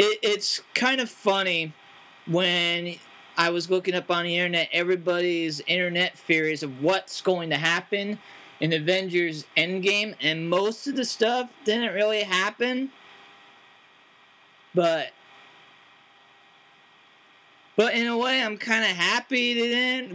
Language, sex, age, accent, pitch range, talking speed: English, male, 20-39, American, 170-220 Hz, 130 wpm